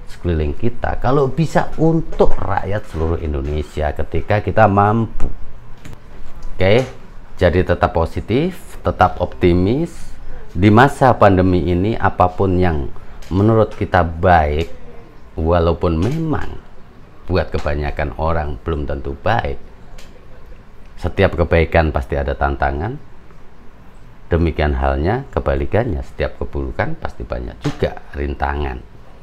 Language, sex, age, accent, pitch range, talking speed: Indonesian, male, 40-59, native, 75-95 Hz, 100 wpm